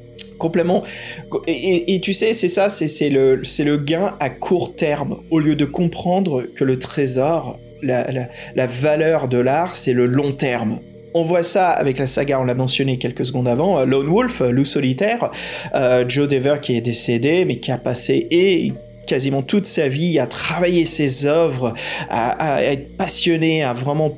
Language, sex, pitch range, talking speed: French, male, 130-160 Hz, 190 wpm